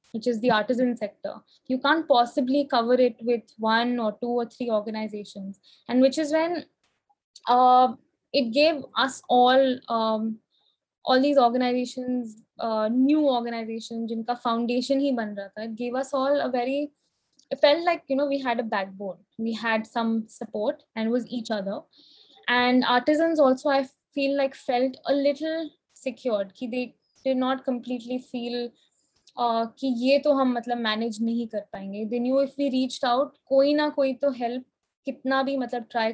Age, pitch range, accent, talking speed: 20-39, 225-270 Hz, Indian, 150 wpm